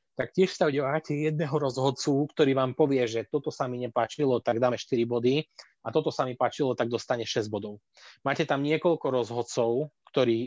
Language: Slovak